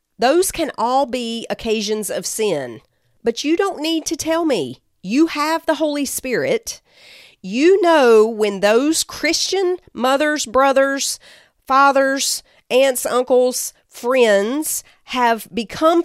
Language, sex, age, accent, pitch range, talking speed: English, female, 40-59, American, 215-300 Hz, 120 wpm